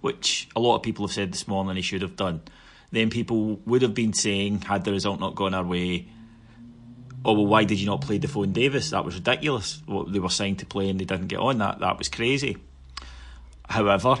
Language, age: English, 30-49